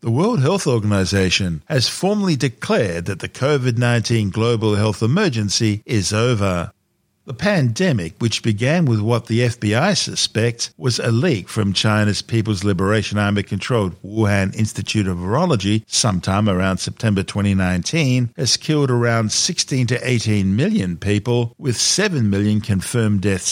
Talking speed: 135 wpm